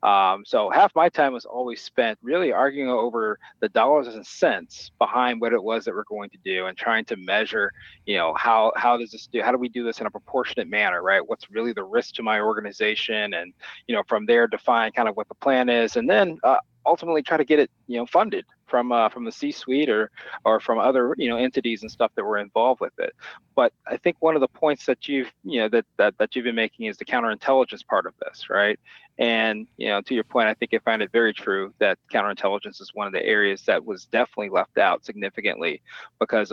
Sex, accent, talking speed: male, American, 240 wpm